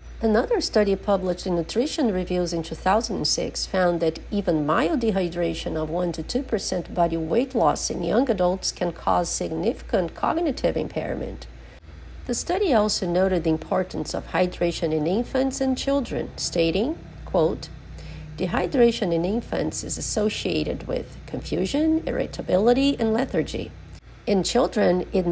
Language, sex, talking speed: English, female, 130 wpm